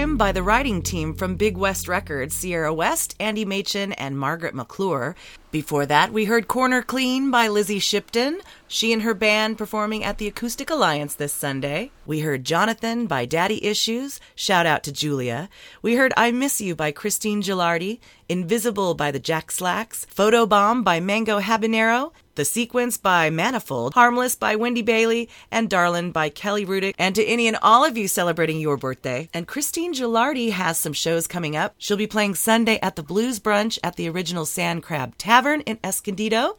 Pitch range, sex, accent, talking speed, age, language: 170-230 Hz, female, American, 180 wpm, 30-49, English